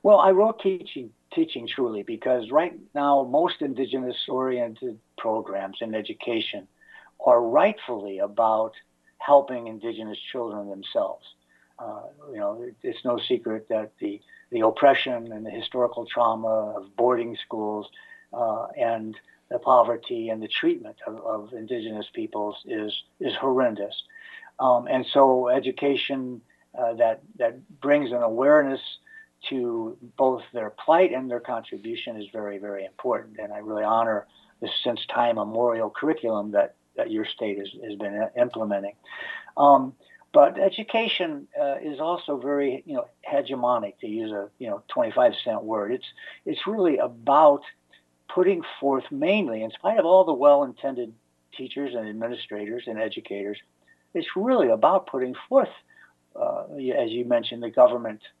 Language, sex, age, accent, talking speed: English, male, 60-79, American, 140 wpm